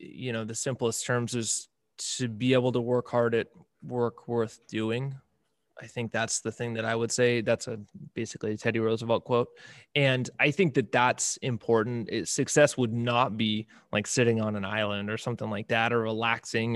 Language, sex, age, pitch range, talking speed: English, male, 20-39, 115-130 Hz, 190 wpm